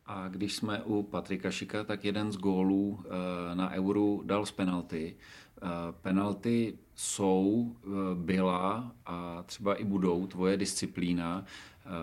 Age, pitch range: 40-59, 95-105 Hz